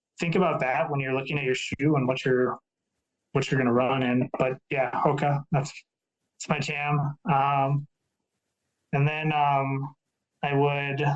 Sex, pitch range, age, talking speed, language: male, 135-160 Hz, 20-39, 160 wpm, English